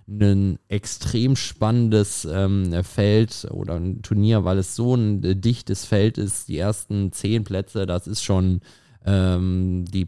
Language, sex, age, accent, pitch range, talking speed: German, male, 20-39, German, 95-115 Hz, 145 wpm